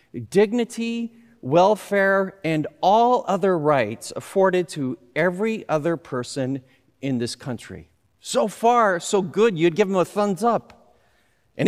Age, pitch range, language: 40-59, 130-205 Hz, English